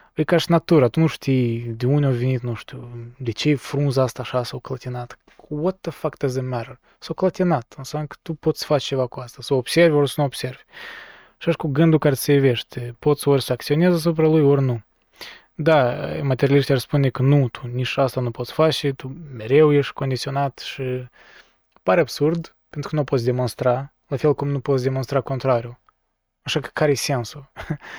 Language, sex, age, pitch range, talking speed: Romanian, male, 20-39, 125-150 Hz, 210 wpm